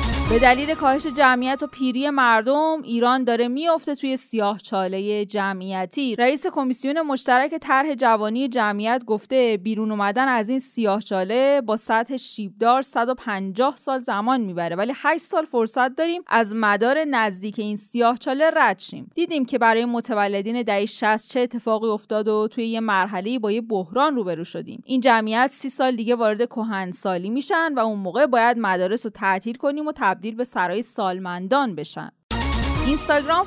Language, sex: Persian, female